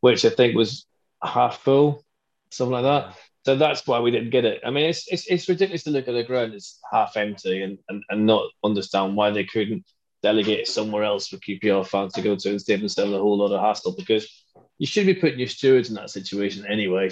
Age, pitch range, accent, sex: 20-39, 105-135 Hz, British, male